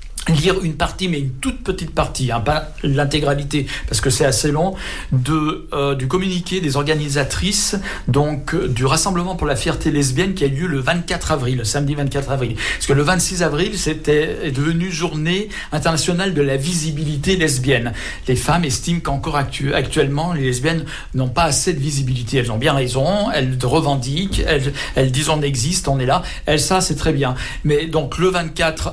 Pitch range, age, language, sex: 140-165 Hz, 60-79, French, male